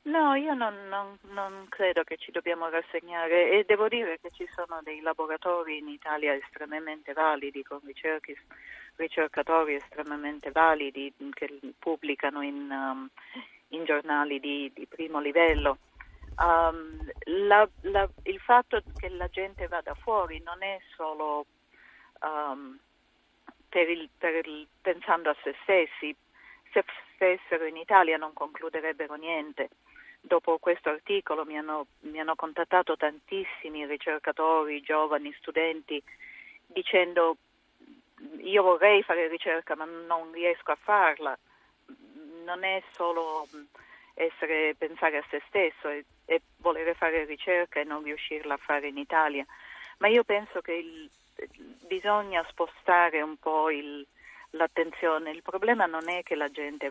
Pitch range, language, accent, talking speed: 150-185 Hz, Italian, native, 135 wpm